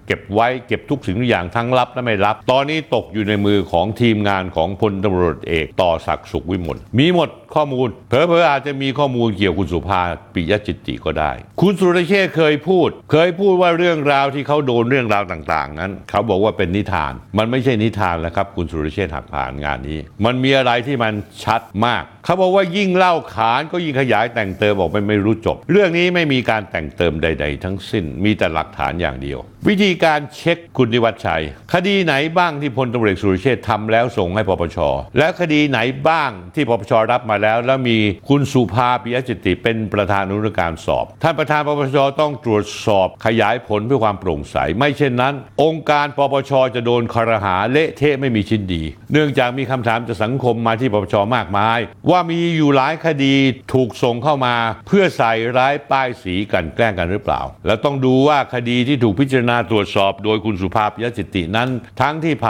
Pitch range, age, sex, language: 100-140 Hz, 60-79, male, Thai